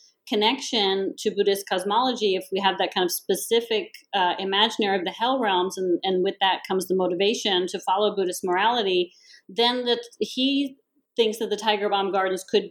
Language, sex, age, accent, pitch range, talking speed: English, female, 40-59, American, 190-235 Hz, 180 wpm